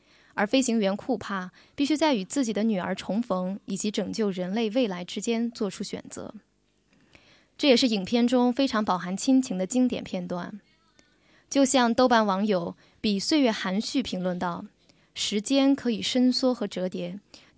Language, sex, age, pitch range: Chinese, female, 20-39, 190-250 Hz